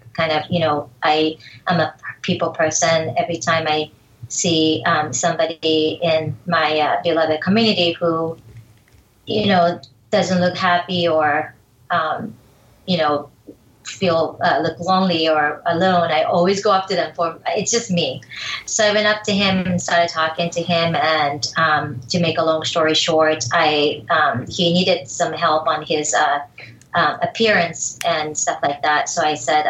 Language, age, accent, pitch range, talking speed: English, 30-49, American, 155-175 Hz, 170 wpm